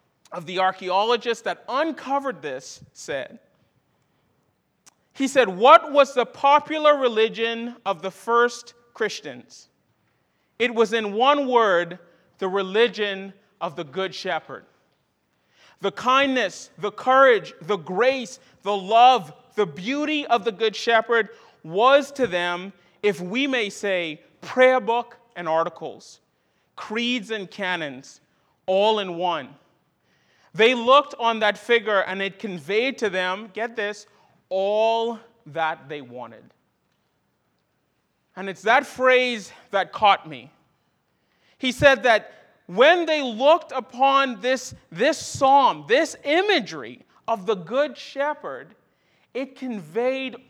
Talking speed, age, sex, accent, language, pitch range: 120 wpm, 40-59, male, American, English, 190-255 Hz